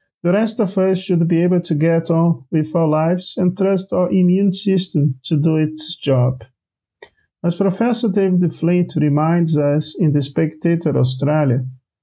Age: 50-69